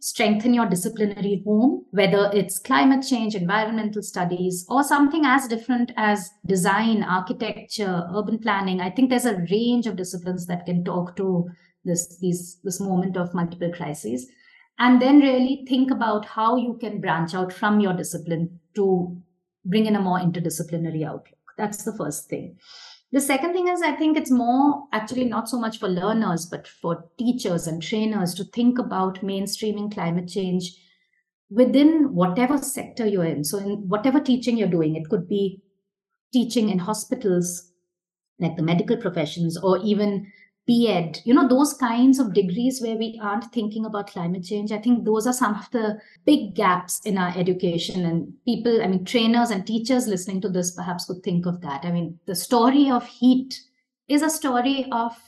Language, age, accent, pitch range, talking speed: English, 50-69, Indian, 180-245 Hz, 170 wpm